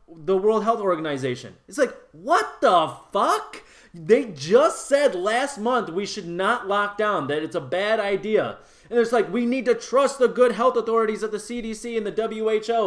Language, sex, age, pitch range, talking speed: English, male, 20-39, 160-235 Hz, 190 wpm